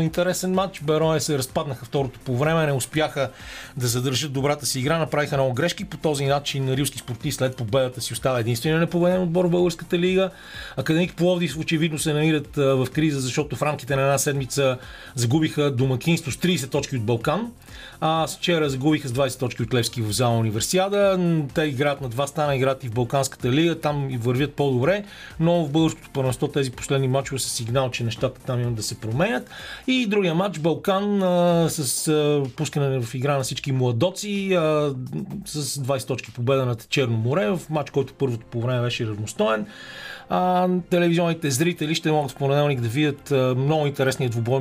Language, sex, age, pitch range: Bulgarian, male, 40-59, 130-165 Hz